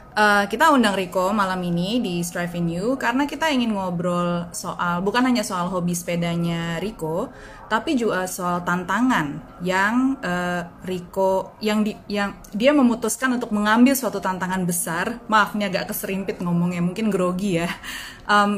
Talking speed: 150 wpm